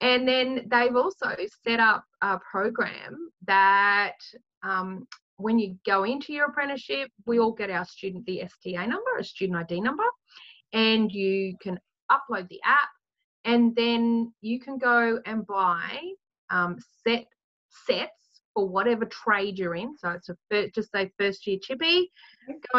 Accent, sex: Australian, female